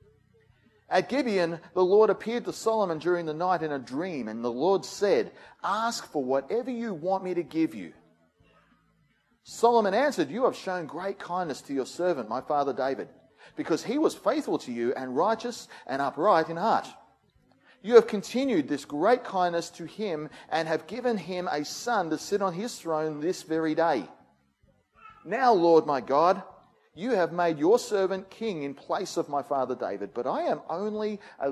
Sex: male